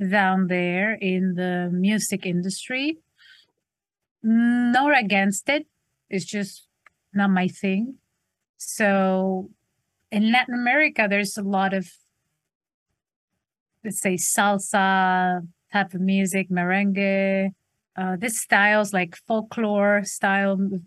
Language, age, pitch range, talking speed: English, 30-49, 190-240 Hz, 105 wpm